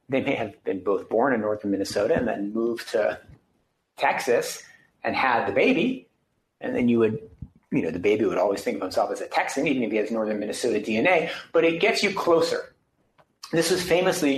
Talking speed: 205 wpm